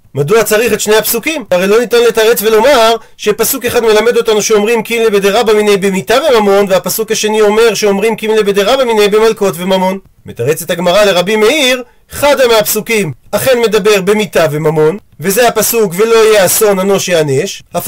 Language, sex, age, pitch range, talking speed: Hebrew, male, 40-59, 195-240 Hz, 150 wpm